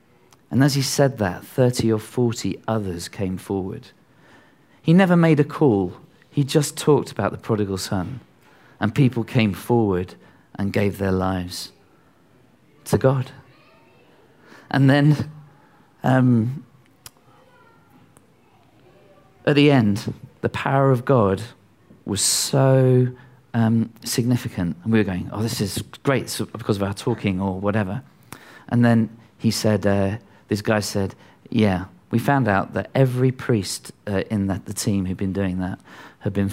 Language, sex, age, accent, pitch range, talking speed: English, male, 40-59, British, 100-135 Hz, 140 wpm